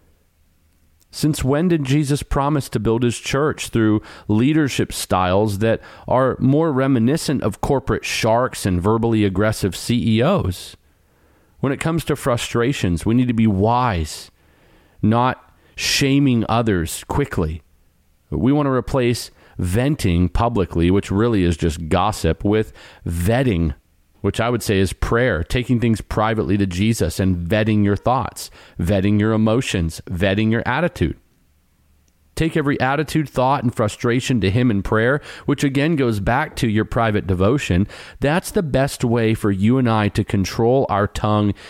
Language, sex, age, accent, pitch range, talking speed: English, male, 40-59, American, 90-125 Hz, 145 wpm